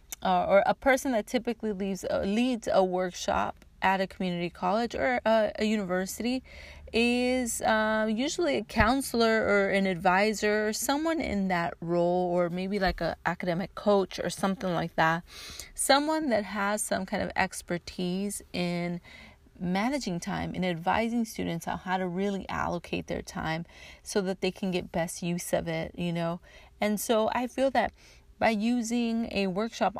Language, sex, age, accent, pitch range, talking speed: English, female, 30-49, American, 180-220 Hz, 165 wpm